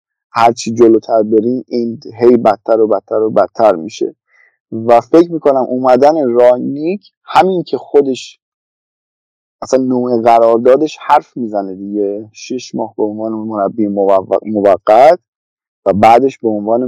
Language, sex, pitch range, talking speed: Persian, male, 110-140 Hz, 130 wpm